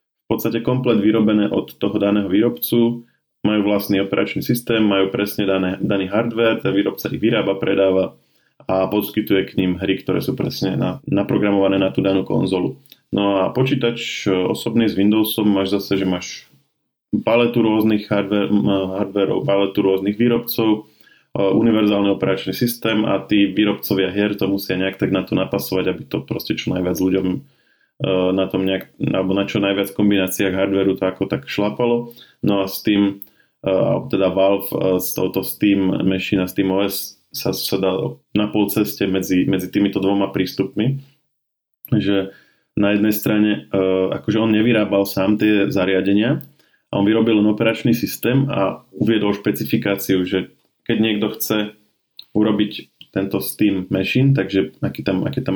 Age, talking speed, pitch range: 20-39, 150 wpm, 95-110 Hz